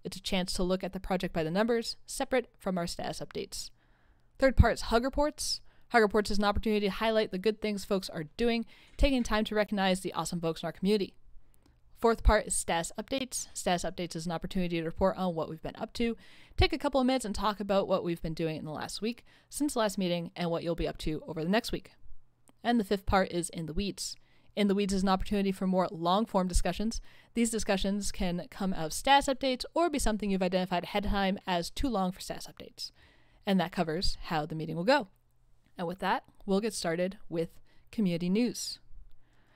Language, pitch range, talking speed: English, 175-225 Hz, 225 wpm